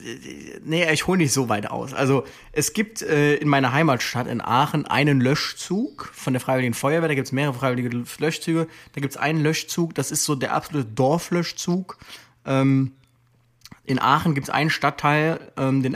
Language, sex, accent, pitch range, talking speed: German, male, German, 125-150 Hz, 180 wpm